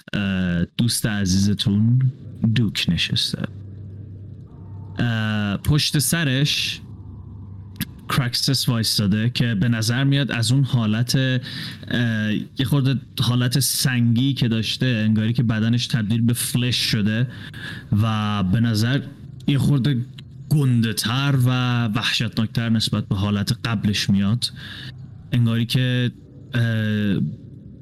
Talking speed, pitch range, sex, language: 90 wpm, 110-130 Hz, male, Persian